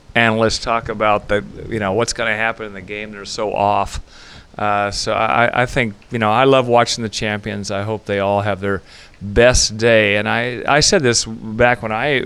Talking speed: 215 wpm